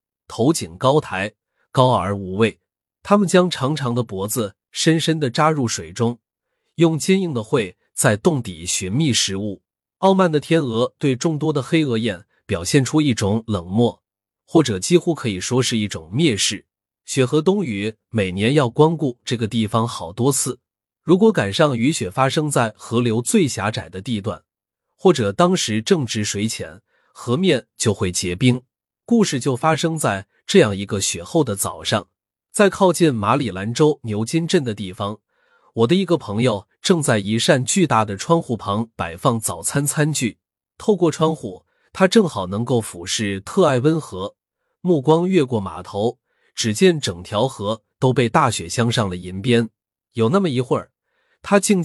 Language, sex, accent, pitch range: Chinese, male, native, 105-160 Hz